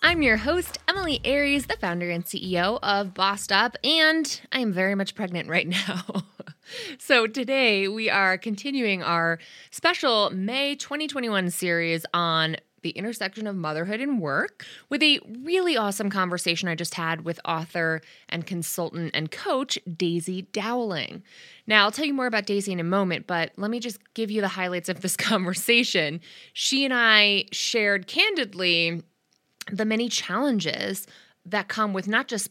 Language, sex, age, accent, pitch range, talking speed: English, female, 20-39, American, 175-245 Hz, 160 wpm